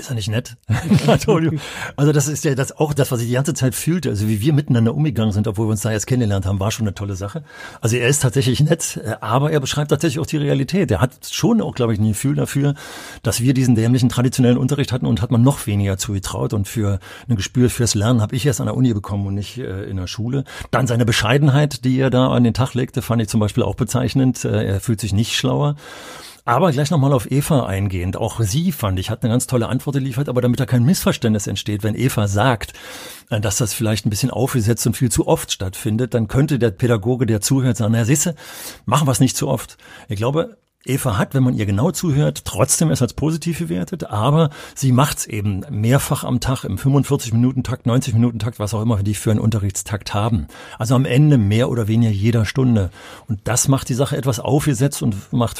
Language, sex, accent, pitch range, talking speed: German, male, German, 110-140 Hz, 225 wpm